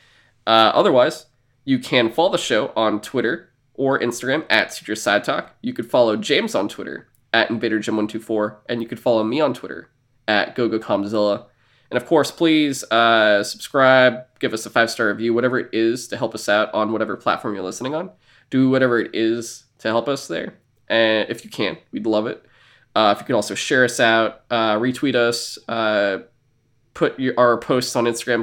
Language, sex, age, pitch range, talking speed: English, male, 20-39, 110-125 Hz, 185 wpm